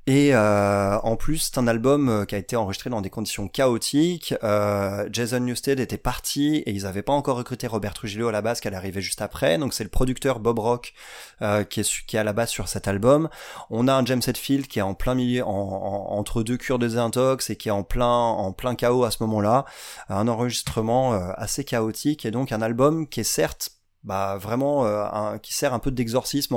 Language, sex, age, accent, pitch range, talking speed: French, male, 30-49, French, 105-130 Hz, 230 wpm